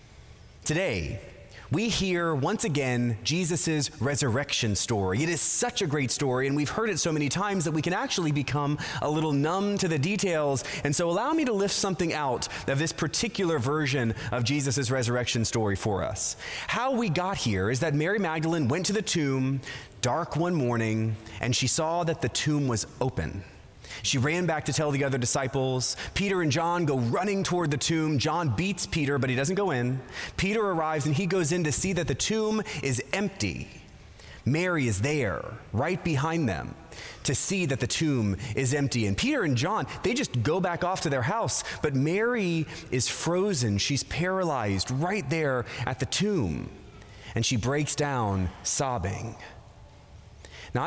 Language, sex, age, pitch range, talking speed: English, male, 30-49, 120-170 Hz, 180 wpm